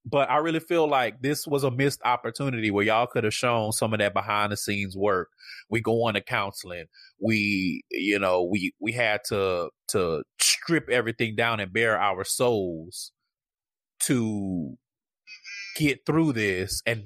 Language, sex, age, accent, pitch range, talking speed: English, male, 30-49, American, 105-145 Hz, 165 wpm